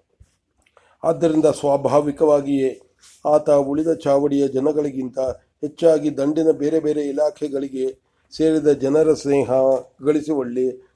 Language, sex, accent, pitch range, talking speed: English, male, Indian, 135-150 Hz, 95 wpm